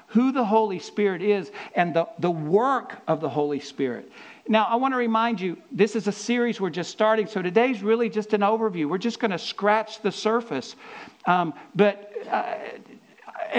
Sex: male